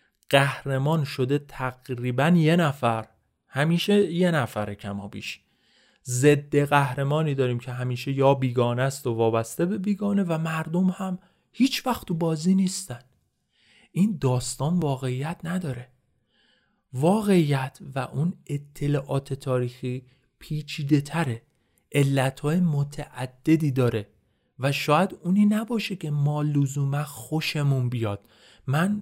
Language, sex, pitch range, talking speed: Persian, male, 130-180 Hz, 105 wpm